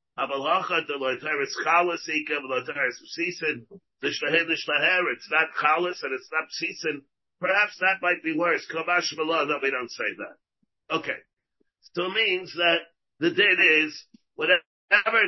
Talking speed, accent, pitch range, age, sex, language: 100 wpm, American, 150-180 Hz, 50-69, male, English